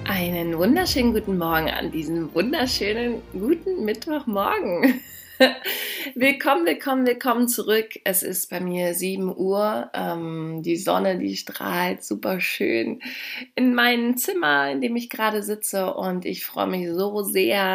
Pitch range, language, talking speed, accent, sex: 170-230 Hz, German, 130 wpm, German, female